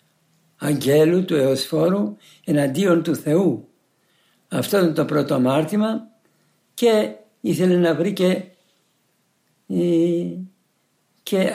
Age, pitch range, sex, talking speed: 60-79, 150-185 Hz, male, 90 wpm